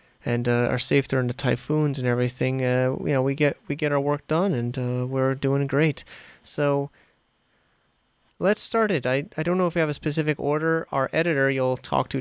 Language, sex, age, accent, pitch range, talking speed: English, male, 30-49, American, 120-145 Hz, 210 wpm